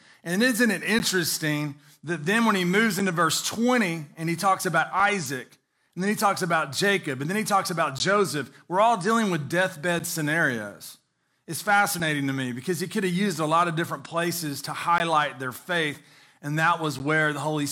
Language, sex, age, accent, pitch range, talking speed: English, male, 30-49, American, 150-200 Hz, 200 wpm